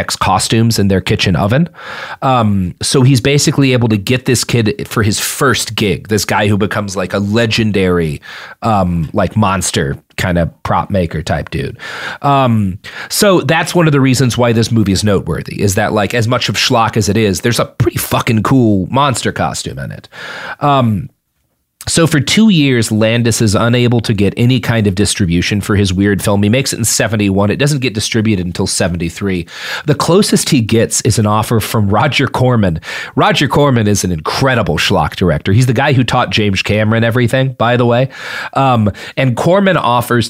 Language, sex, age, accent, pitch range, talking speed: English, male, 30-49, American, 105-130 Hz, 190 wpm